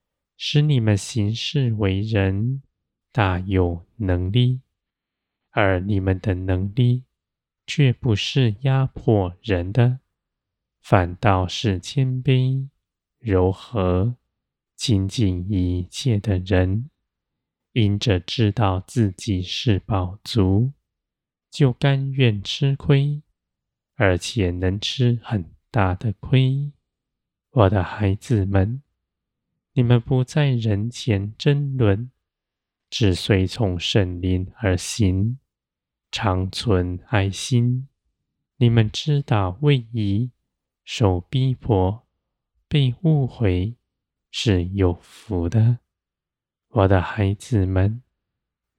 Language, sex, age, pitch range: Chinese, male, 20-39, 95-125 Hz